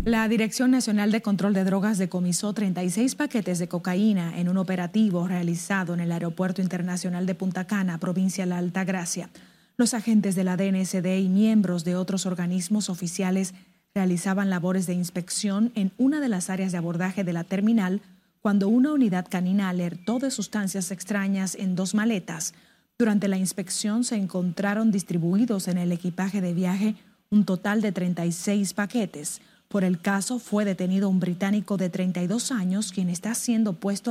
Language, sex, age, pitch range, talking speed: Spanish, female, 30-49, 185-210 Hz, 165 wpm